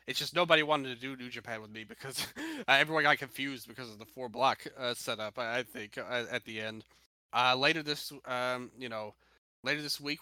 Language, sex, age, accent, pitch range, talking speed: English, male, 30-49, American, 115-150 Hz, 210 wpm